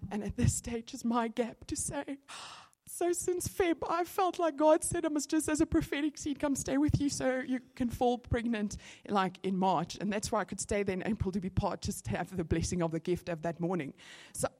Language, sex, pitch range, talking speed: English, female, 185-235 Hz, 245 wpm